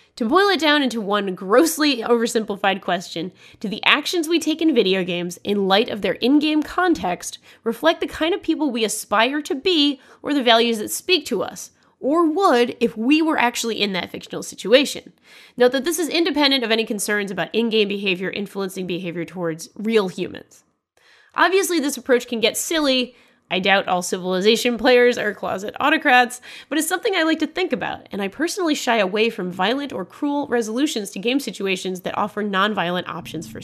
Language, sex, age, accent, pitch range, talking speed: English, female, 20-39, American, 210-300 Hz, 185 wpm